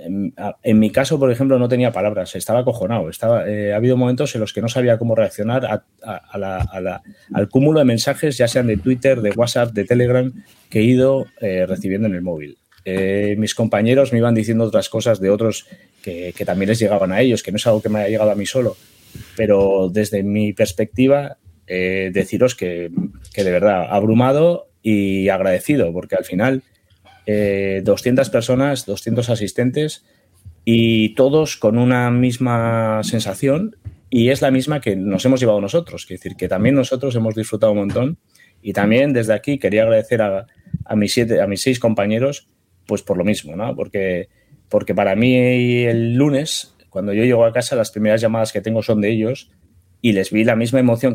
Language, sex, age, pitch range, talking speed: Spanish, male, 30-49, 100-125 Hz, 185 wpm